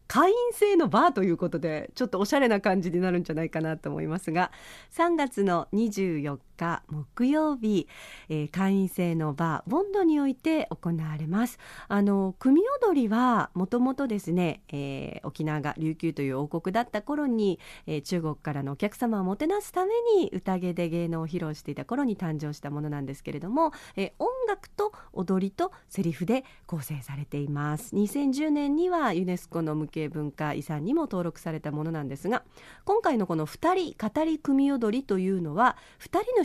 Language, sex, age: Japanese, female, 40-59